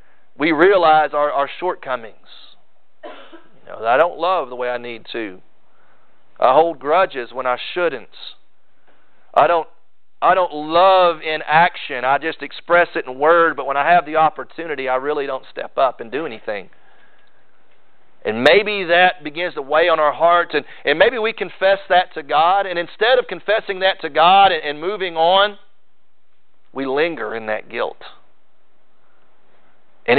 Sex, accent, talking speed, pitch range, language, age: male, American, 160 wpm, 140-180 Hz, English, 40-59